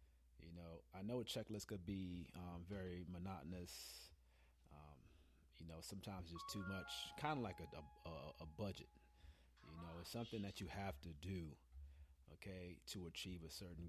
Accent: American